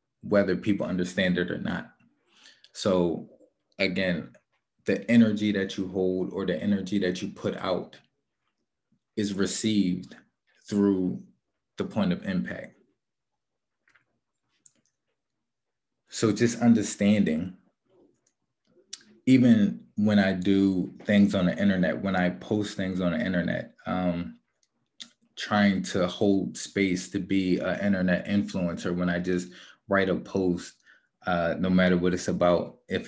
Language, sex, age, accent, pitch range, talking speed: English, male, 20-39, American, 90-105 Hz, 125 wpm